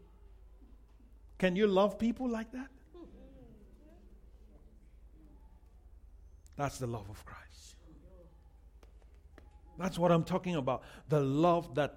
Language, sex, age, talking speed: English, male, 50-69, 95 wpm